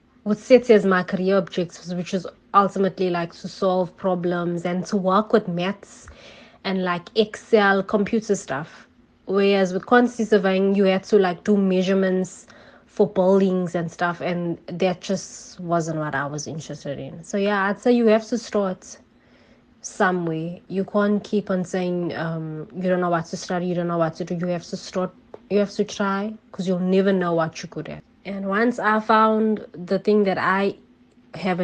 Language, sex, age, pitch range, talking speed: English, female, 20-39, 175-210 Hz, 185 wpm